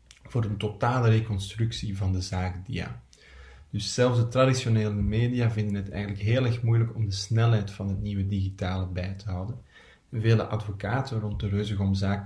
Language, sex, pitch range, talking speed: Dutch, male, 100-115 Hz, 165 wpm